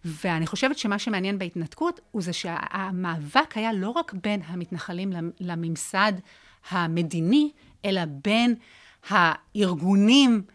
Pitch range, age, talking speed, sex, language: 185-235 Hz, 30-49, 100 wpm, female, Hebrew